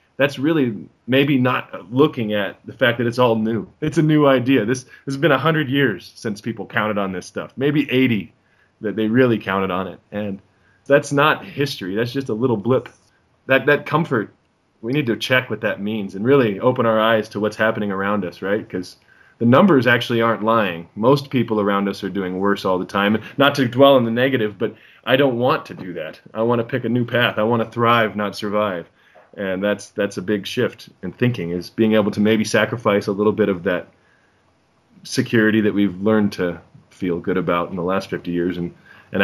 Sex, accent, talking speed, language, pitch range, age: male, American, 215 wpm, English, 105-130 Hz, 20-39